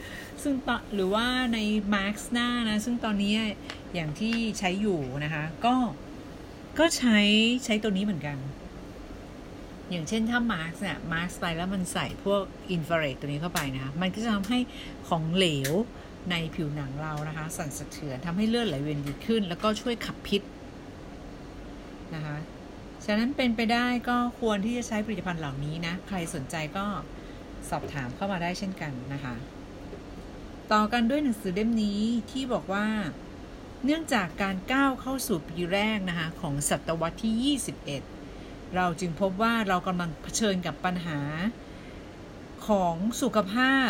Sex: female